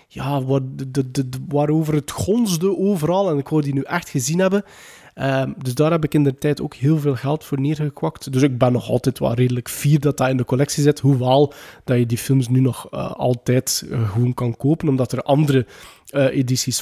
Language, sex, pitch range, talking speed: Dutch, male, 135-175 Hz, 225 wpm